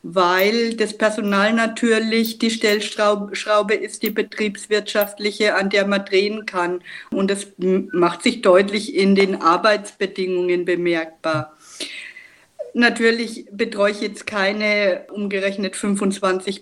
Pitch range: 195-220 Hz